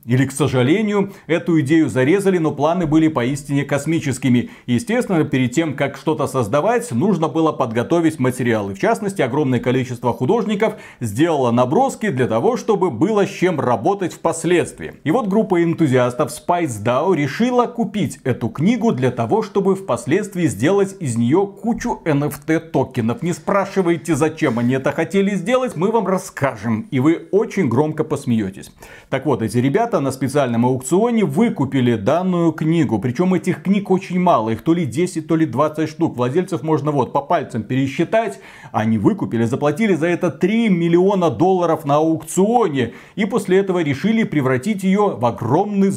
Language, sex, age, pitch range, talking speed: Russian, male, 40-59, 130-190 Hz, 155 wpm